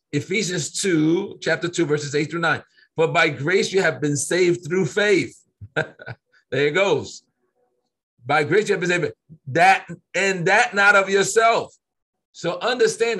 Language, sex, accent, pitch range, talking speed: English, male, American, 165-225 Hz, 150 wpm